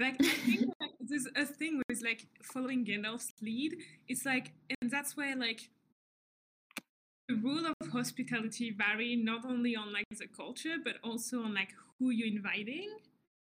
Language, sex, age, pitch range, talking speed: English, female, 20-39, 230-280 Hz, 155 wpm